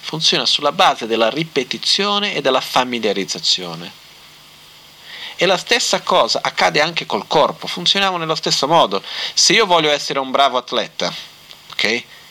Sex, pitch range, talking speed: male, 110-140 Hz, 135 wpm